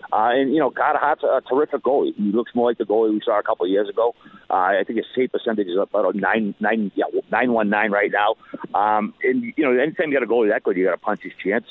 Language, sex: English, male